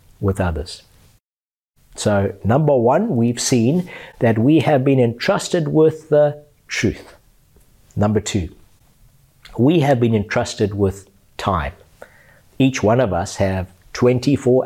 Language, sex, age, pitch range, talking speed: English, male, 60-79, 100-135 Hz, 120 wpm